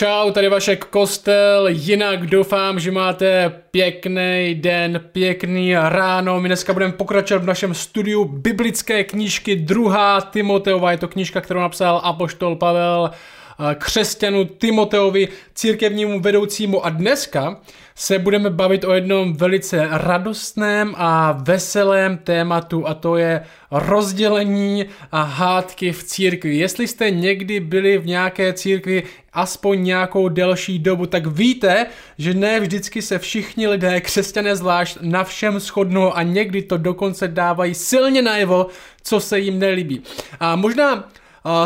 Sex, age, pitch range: male, 20-39, 175-205 Hz